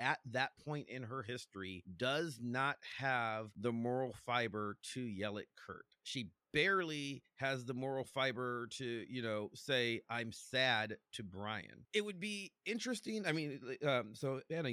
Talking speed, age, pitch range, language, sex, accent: 160 wpm, 30-49, 110-145 Hz, English, male, American